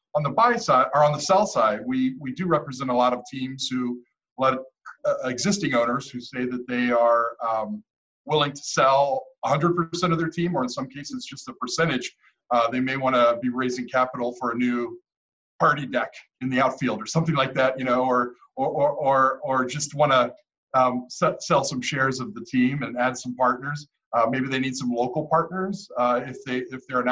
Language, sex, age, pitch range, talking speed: English, male, 40-59, 125-160 Hz, 215 wpm